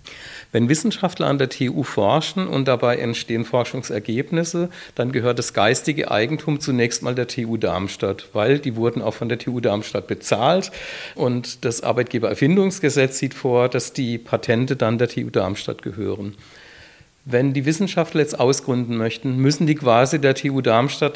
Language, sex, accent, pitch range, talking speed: German, male, German, 115-145 Hz, 155 wpm